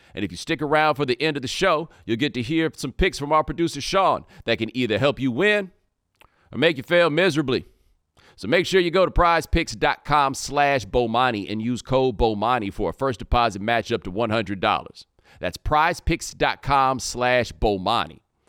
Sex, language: male, English